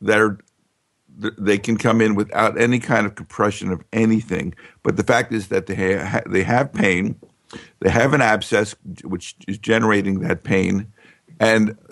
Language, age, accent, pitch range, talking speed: English, 50-69, American, 95-125 Hz, 165 wpm